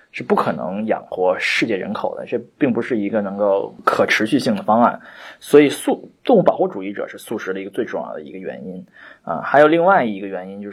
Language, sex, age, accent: Chinese, male, 20-39, native